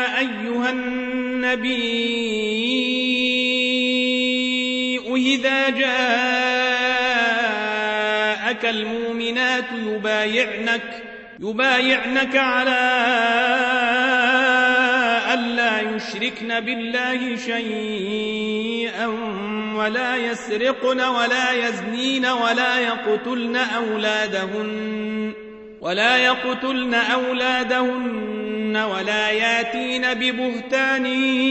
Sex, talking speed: male, 45 wpm